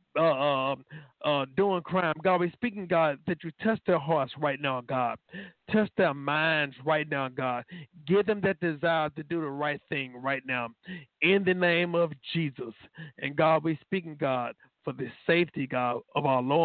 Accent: American